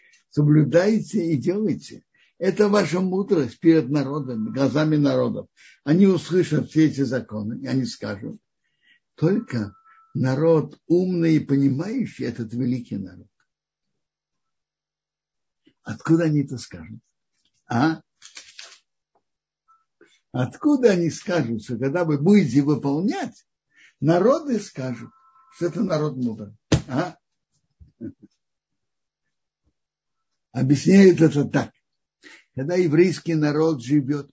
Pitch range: 130-180 Hz